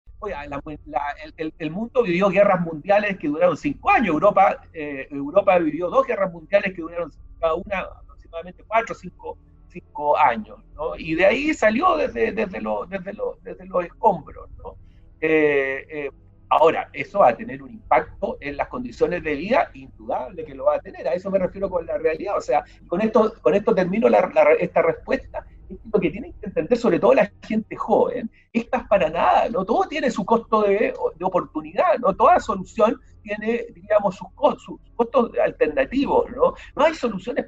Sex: male